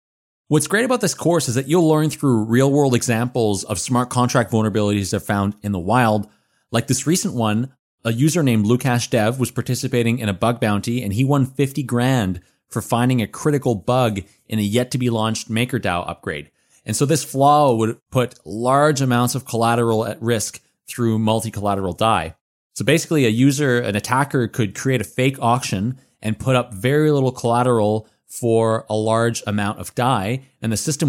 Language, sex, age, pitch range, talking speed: English, male, 30-49, 110-135 Hz, 190 wpm